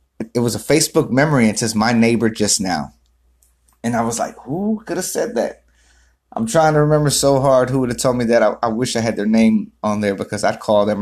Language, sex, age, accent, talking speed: English, male, 30-49, American, 245 wpm